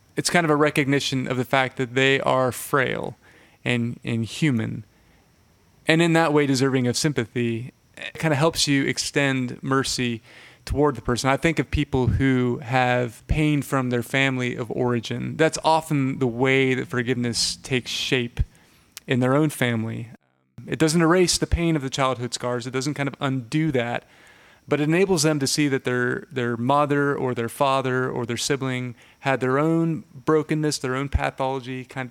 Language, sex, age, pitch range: English, male, 30-49, 125-150 Hz